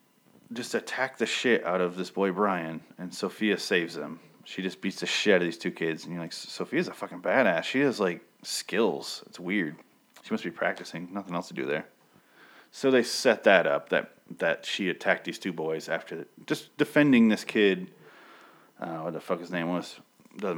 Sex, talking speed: male, 205 wpm